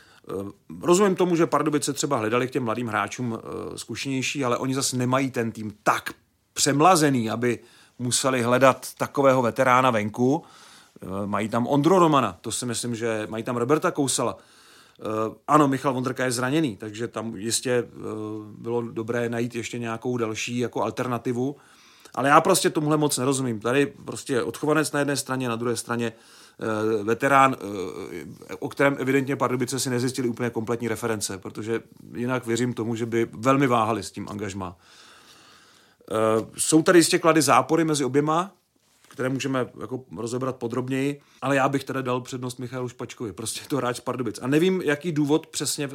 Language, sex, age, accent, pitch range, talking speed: Czech, male, 40-59, native, 115-140 Hz, 155 wpm